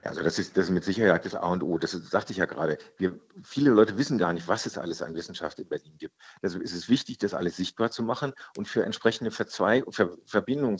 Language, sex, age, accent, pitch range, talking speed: German, male, 50-69, German, 90-115 Hz, 265 wpm